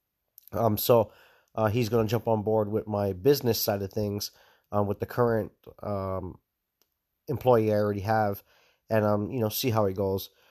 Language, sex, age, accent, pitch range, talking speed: English, male, 30-49, American, 105-125 Hz, 185 wpm